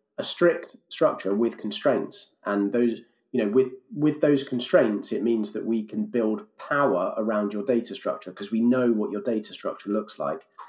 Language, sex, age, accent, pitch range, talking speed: English, male, 30-49, British, 105-135 Hz, 185 wpm